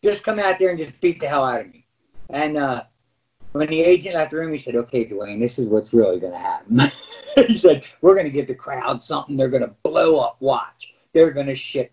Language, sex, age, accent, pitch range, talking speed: English, male, 50-69, American, 135-215 Hz, 250 wpm